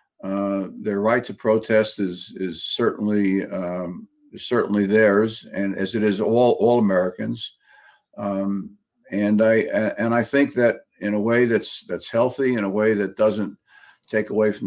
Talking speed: 165 wpm